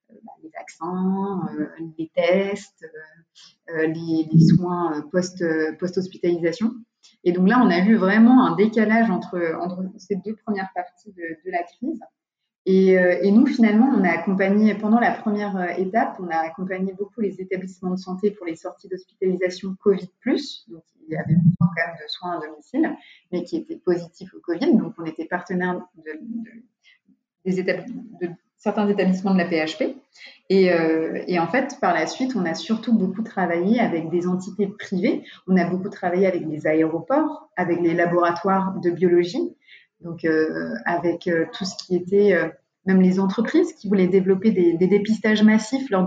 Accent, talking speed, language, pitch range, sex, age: French, 175 wpm, French, 175-220 Hz, female, 30-49